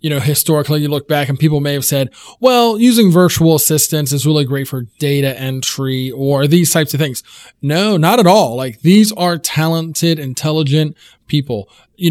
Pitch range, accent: 145-180 Hz, American